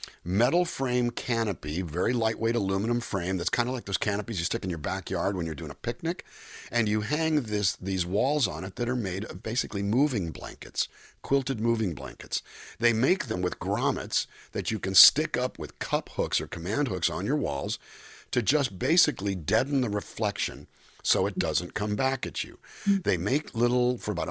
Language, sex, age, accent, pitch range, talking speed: English, male, 50-69, American, 90-120 Hz, 195 wpm